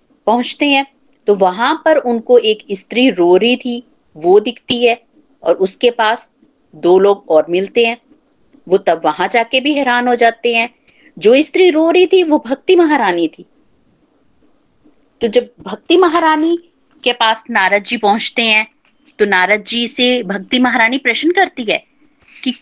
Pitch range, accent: 215-275 Hz, native